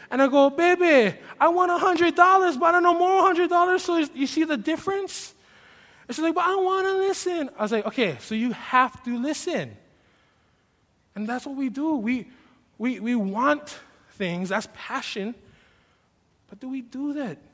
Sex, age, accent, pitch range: male, 20-39, American, 205-280 Hz